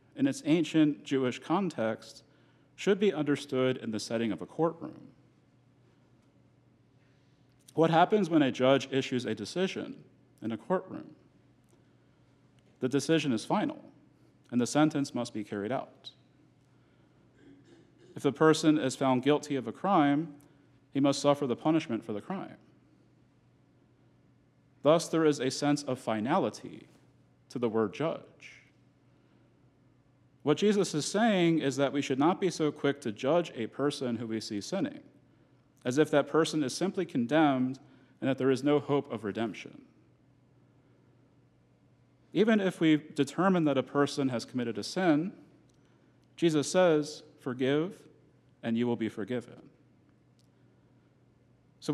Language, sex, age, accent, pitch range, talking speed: English, male, 40-59, American, 125-155 Hz, 135 wpm